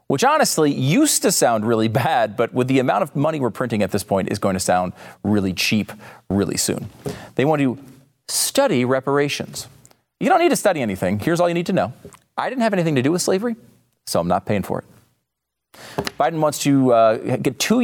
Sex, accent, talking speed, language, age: male, American, 210 wpm, English, 40-59